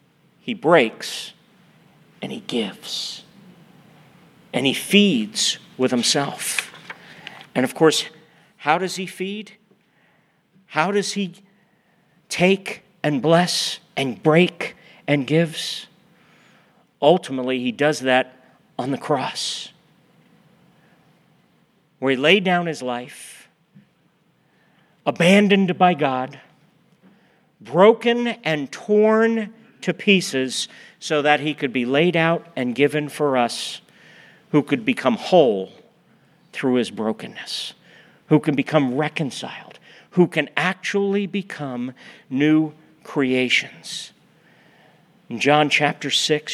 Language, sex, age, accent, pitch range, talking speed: English, male, 50-69, American, 145-210 Hz, 105 wpm